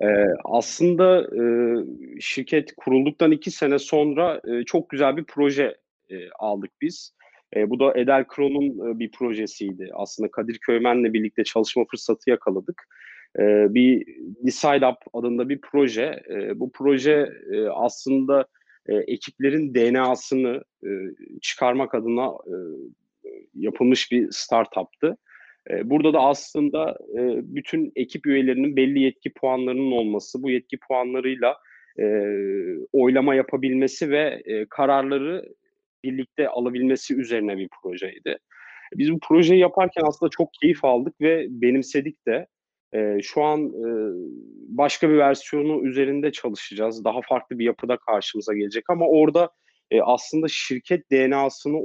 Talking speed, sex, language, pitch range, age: 105 wpm, male, Turkish, 125-155 Hz, 40-59